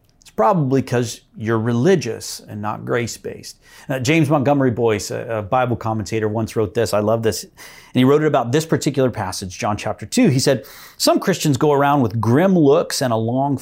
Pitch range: 115-155 Hz